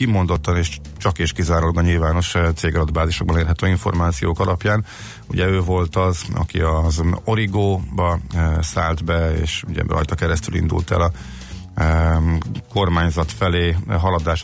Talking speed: 125 wpm